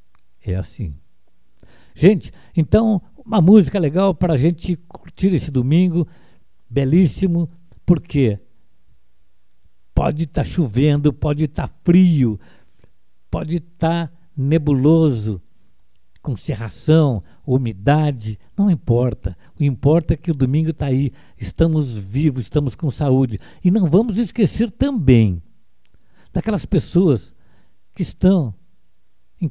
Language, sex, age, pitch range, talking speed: Portuguese, male, 60-79, 120-170 Hz, 110 wpm